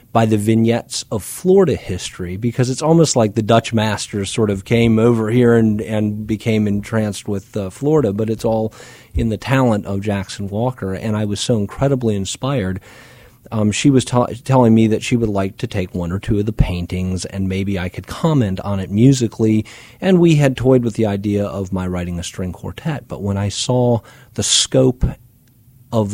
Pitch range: 95-120 Hz